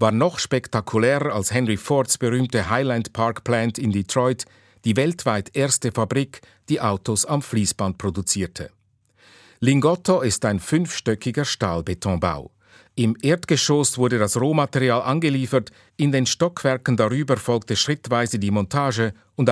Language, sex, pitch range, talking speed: German, male, 110-135 Hz, 125 wpm